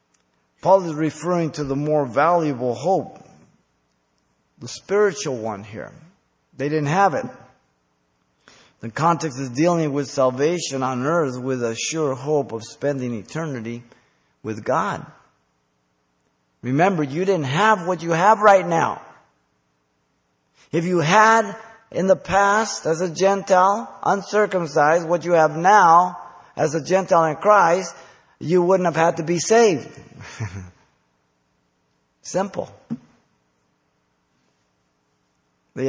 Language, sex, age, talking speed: English, male, 50-69, 115 wpm